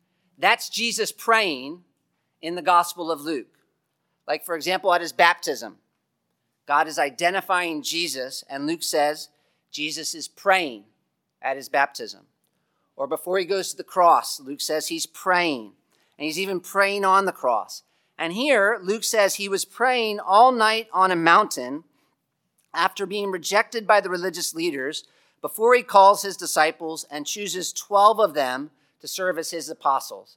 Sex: male